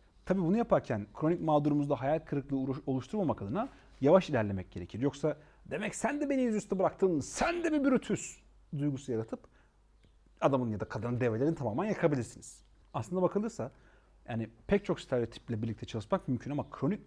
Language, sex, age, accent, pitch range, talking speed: Turkish, male, 40-59, native, 120-180 Hz, 150 wpm